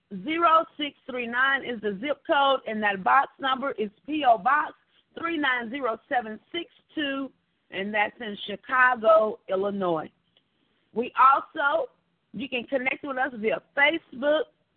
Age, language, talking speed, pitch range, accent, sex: 40-59, English, 110 wpm, 225-310 Hz, American, female